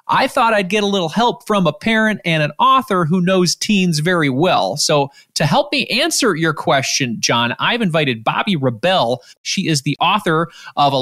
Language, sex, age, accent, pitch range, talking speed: English, male, 30-49, American, 145-200 Hz, 190 wpm